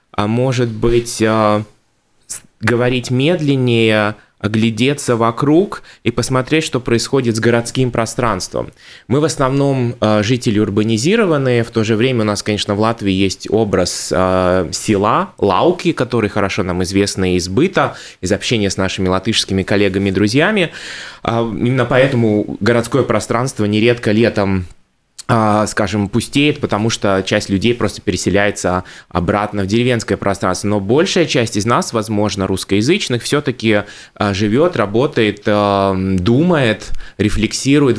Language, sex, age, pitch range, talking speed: Russian, male, 20-39, 105-125 Hz, 120 wpm